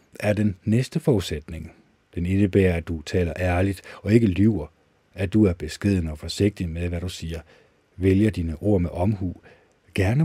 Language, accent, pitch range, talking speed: Danish, native, 85-105 Hz, 170 wpm